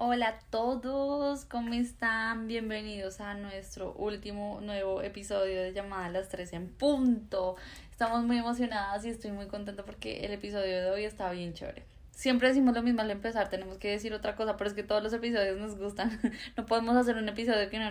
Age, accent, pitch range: 10-29, Colombian, 200-235 Hz